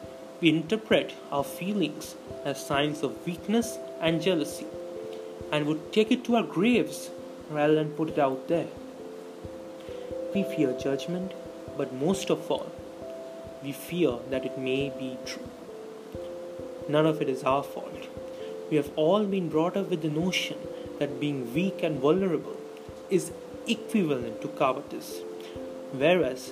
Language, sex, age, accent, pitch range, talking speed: English, male, 30-49, Indian, 125-175 Hz, 140 wpm